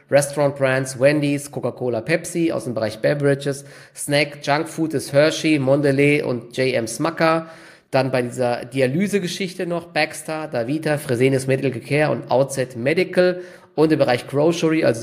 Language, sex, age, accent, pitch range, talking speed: German, male, 20-39, German, 125-150 Hz, 145 wpm